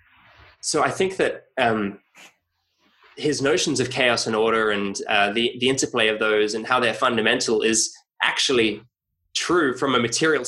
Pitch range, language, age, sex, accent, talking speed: 110-150 Hz, English, 20-39, male, Australian, 160 wpm